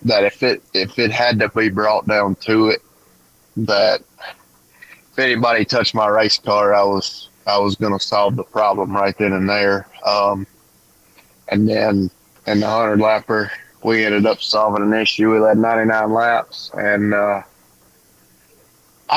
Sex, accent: male, American